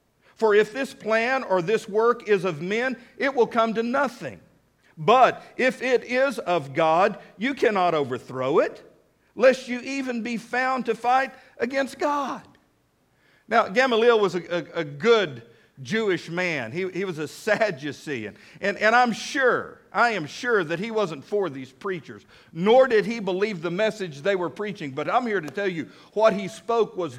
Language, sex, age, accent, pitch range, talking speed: English, male, 50-69, American, 180-245 Hz, 175 wpm